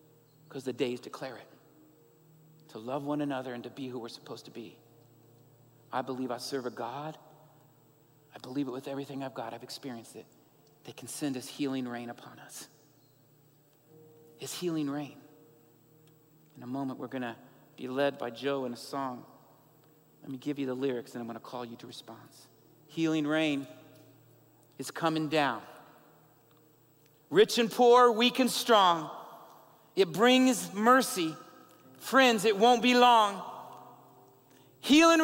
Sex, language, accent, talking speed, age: male, English, American, 150 wpm, 40-59